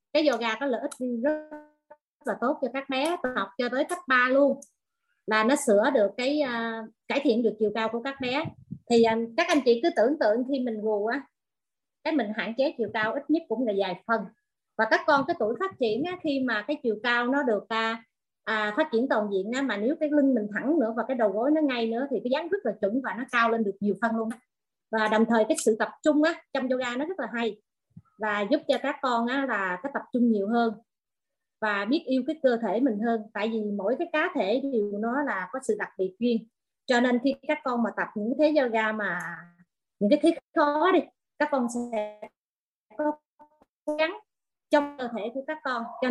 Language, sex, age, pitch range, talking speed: Vietnamese, female, 30-49, 225-290 Hz, 240 wpm